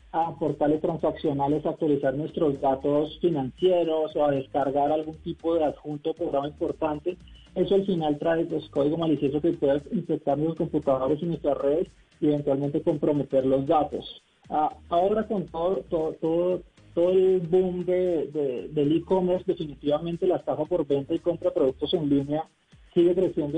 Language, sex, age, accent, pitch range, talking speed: Spanish, male, 30-49, Colombian, 150-180 Hz, 160 wpm